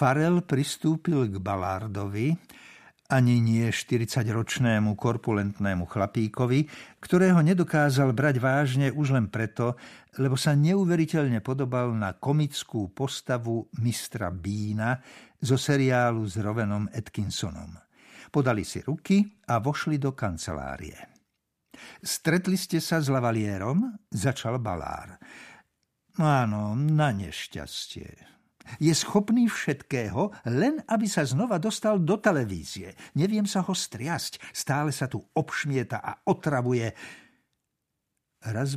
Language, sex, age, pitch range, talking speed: Slovak, male, 60-79, 110-155 Hz, 115 wpm